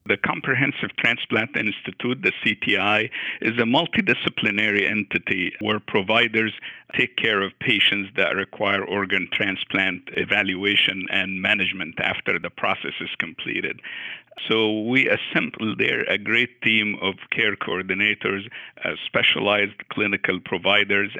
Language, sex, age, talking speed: English, male, 50-69, 120 wpm